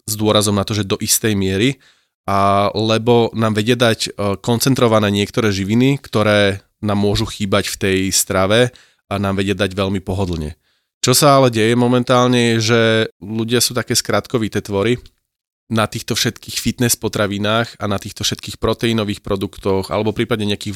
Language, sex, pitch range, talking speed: Slovak, male, 100-115 Hz, 160 wpm